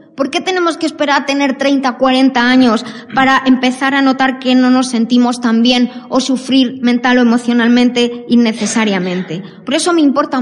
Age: 20-39